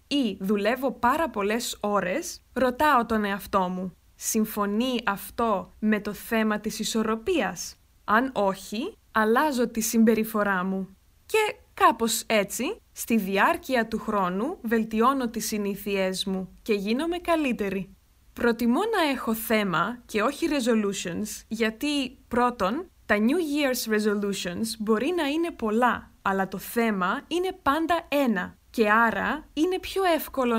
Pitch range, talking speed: 210-290 Hz, 125 wpm